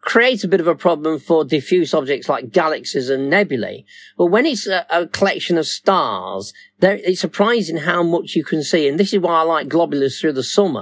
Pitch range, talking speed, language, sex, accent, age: 140-190 Hz, 210 wpm, English, male, British, 40-59